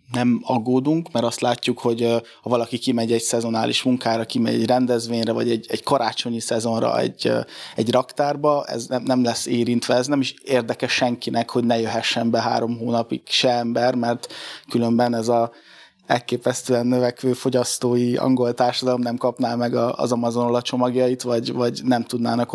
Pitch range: 115-125 Hz